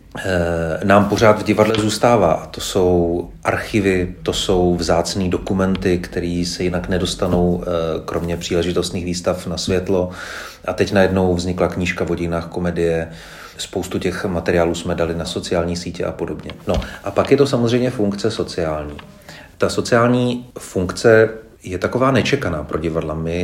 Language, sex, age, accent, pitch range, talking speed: Czech, male, 40-59, native, 85-100 Hz, 145 wpm